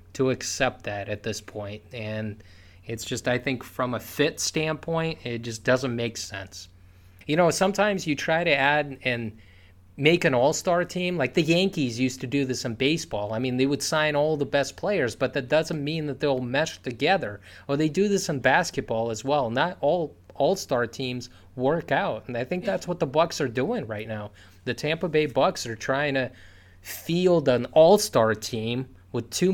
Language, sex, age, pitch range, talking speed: English, male, 20-39, 115-160 Hz, 195 wpm